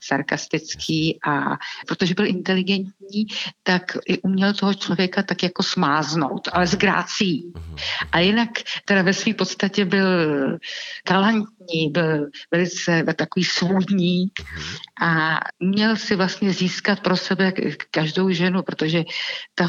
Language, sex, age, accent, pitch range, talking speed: Czech, female, 50-69, native, 170-200 Hz, 115 wpm